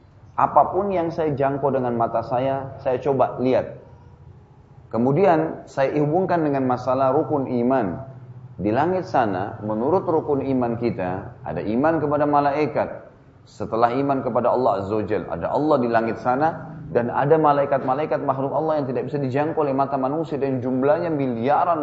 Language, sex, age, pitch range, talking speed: Malay, male, 30-49, 120-150 Hz, 150 wpm